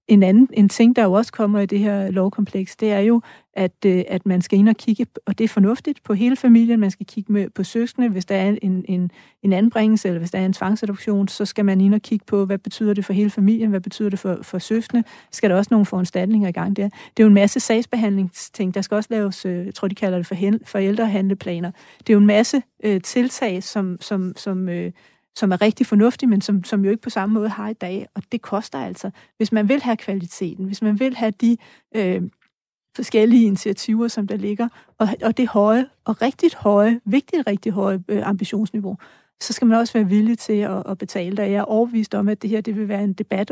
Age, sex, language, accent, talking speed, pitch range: 40-59, female, Danish, native, 235 wpm, 195-220 Hz